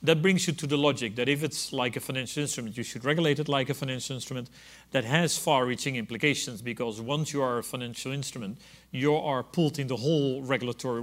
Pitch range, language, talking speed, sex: 120-150 Hz, English, 210 wpm, male